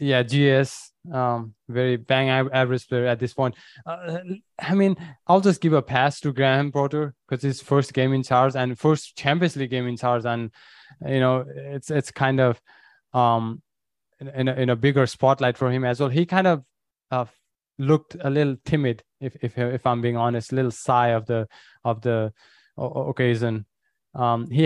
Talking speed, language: 185 wpm, English